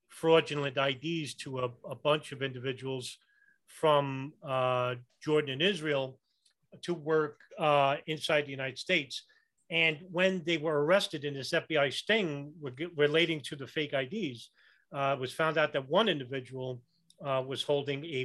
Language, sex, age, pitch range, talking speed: English, male, 40-59, 130-155 Hz, 150 wpm